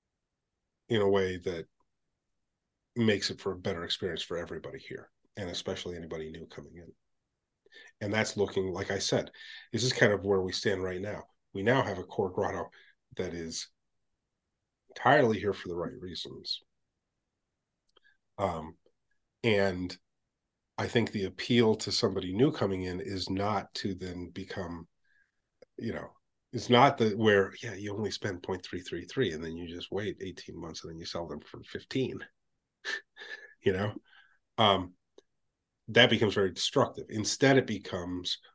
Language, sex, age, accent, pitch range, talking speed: English, male, 40-59, American, 90-110 Hz, 155 wpm